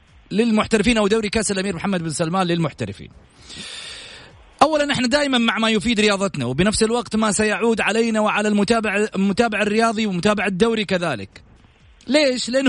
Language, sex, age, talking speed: Arabic, male, 30-49, 140 wpm